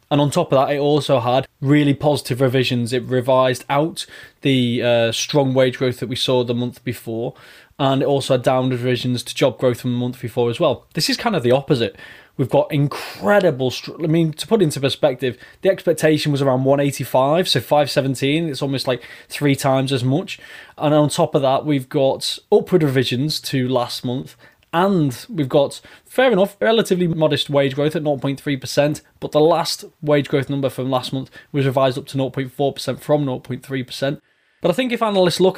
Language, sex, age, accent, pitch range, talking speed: English, male, 20-39, British, 125-150 Hz, 200 wpm